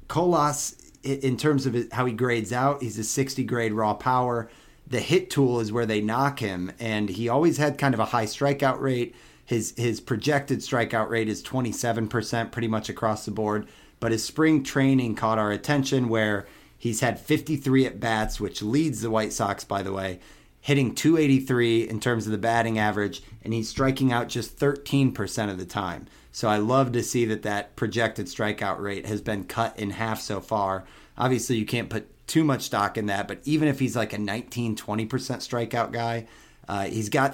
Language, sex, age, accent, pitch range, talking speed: English, male, 30-49, American, 110-135 Hz, 190 wpm